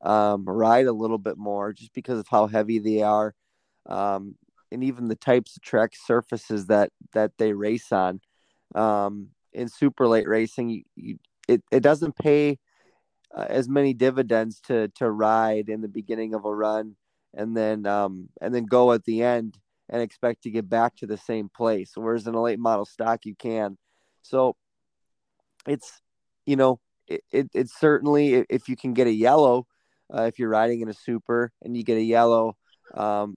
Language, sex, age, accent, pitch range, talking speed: English, male, 20-39, American, 110-125 Hz, 185 wpm